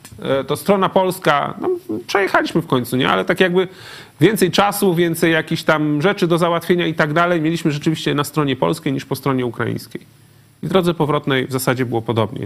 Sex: male